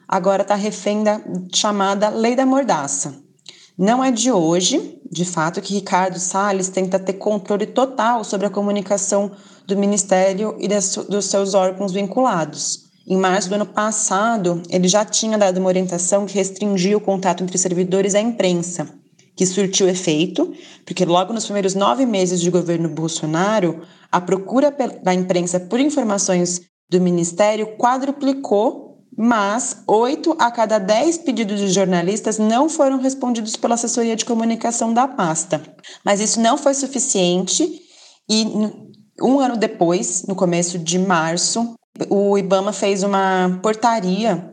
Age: 30-49